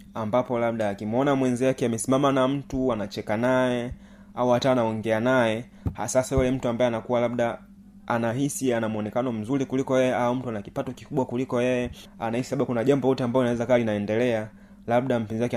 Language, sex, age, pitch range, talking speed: Swahili, male, 20-39, 115-135 Hz, 165 wpm